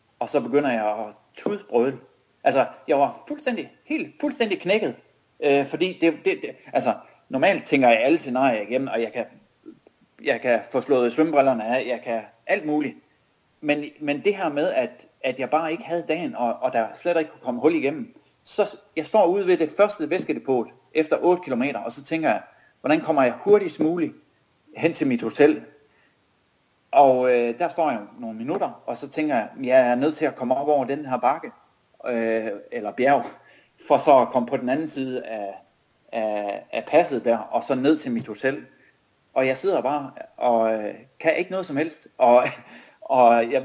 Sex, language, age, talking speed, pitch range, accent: male, Danish, 30-49, 190 wpm, 125-180 Hz, native